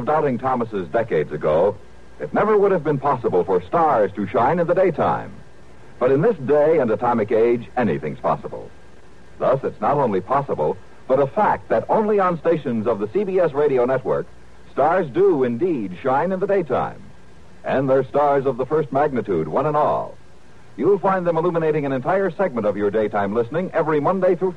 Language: English